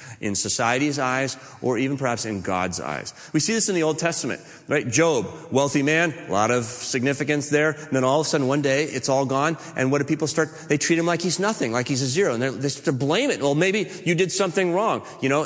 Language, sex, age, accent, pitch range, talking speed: English, male, 40-59, American, 120-145 Hz, 250 wpm